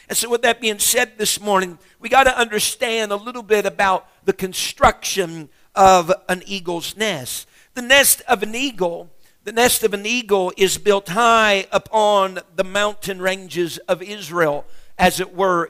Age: 50-69